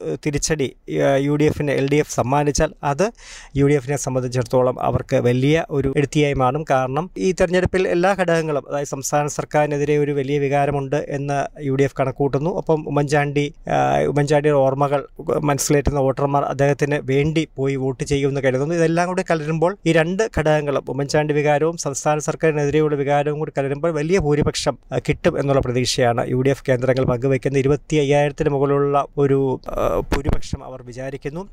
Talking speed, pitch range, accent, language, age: 125 wpm, 140-155 Hz, native, Malayalam, 20-39